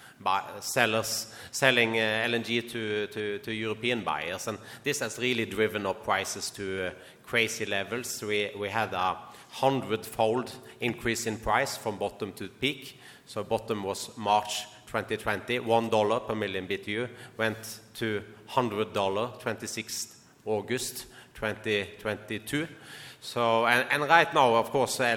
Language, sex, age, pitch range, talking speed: English, male, 30-49, 100-120 Hz, 125 wpm